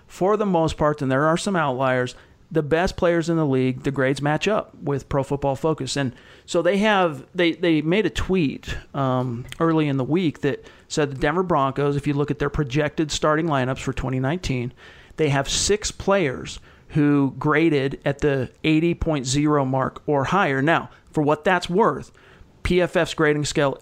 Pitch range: 135-160 Hz